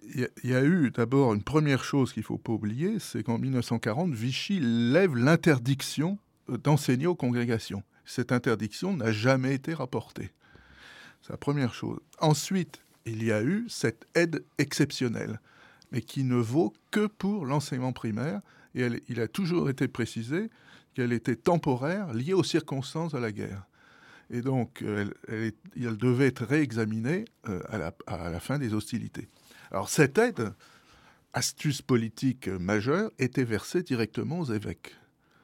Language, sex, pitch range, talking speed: French, male, 110-155 Hz, 155 wpm